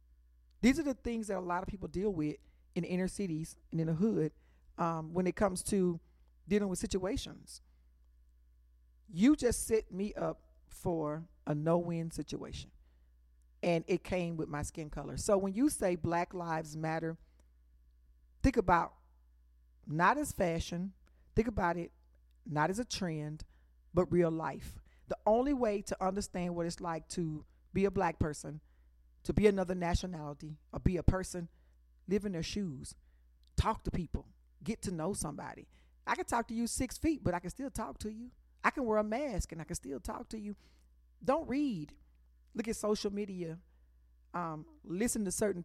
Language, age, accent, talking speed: English, 40-59, American, 175 wpm